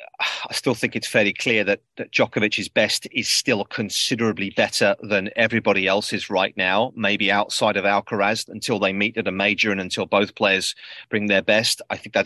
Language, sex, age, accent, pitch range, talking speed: English, male, 30-49, British, 95-110 Hz, 190 wpm